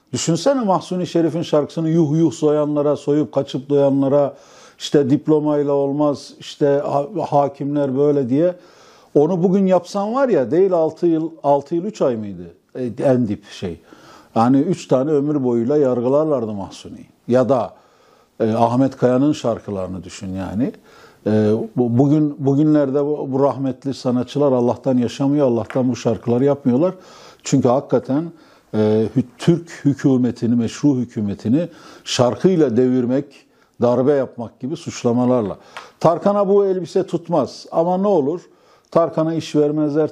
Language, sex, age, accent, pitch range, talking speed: Turkish, male, 60-79, native, 125-155 Hz, 125 wpm